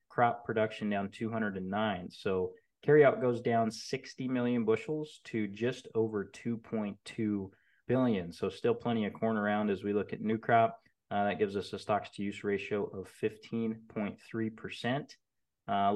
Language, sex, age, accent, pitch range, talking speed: English, male, 20-39, American, 100-115 Hz, 145 wpm